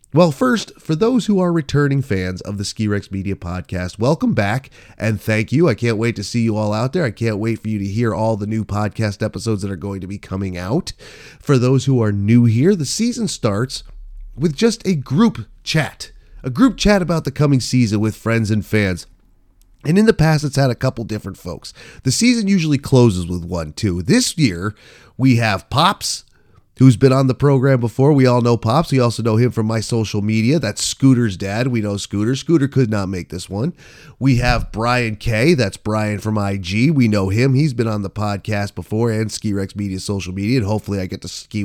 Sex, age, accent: male, 30-49, American